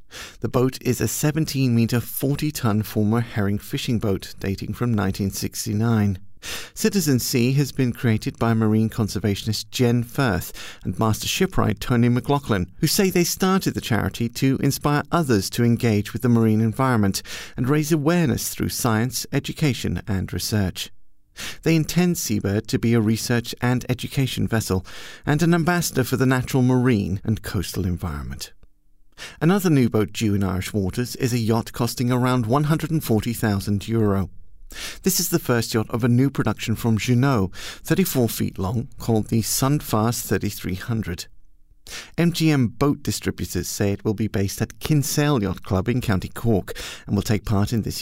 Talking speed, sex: 155 wpm, male